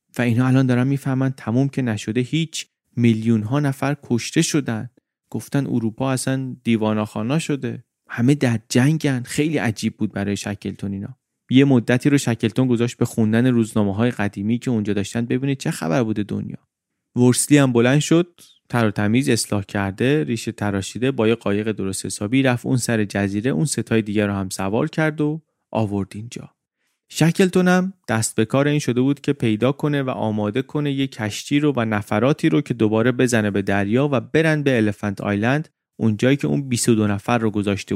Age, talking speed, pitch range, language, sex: 30-49, 180 wpm, 110-135 Hz, Persian, male